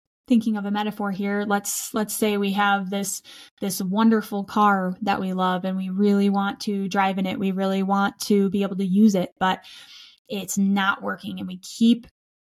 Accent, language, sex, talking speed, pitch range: American, English, female, 195 wpm, 190-220 Hz